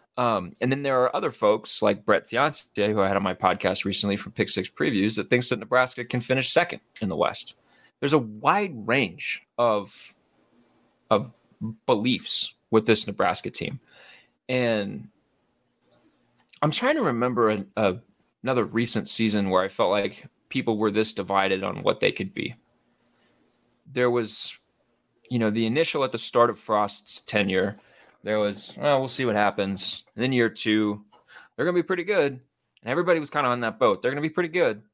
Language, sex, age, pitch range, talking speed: English, male, 20-39, 105-140 Hz, 185 wpm